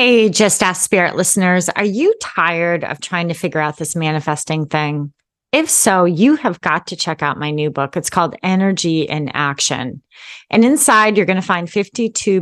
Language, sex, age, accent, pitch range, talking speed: English, female, 30-49, American, 165-240 Hz, 190 wpm